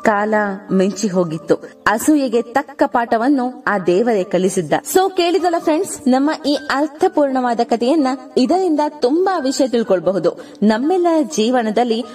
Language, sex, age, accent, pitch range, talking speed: English, female, 20-39, Indian, 210-290 Hz, 90 wpm